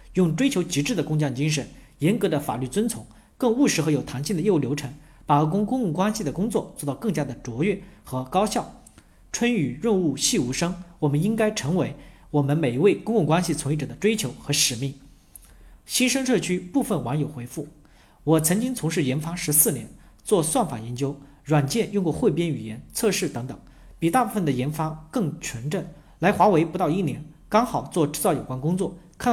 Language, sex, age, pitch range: Chinese, male, 40-59, 140-190 Hz